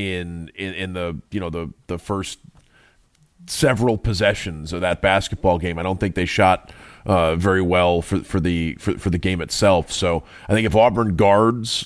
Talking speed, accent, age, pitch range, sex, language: 180 wpm, American, 30-49, 90-110 Hz, male, English